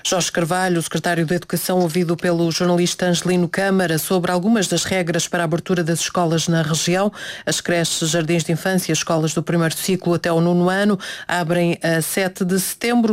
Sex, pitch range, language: female, 170-195 Hz, Portuguese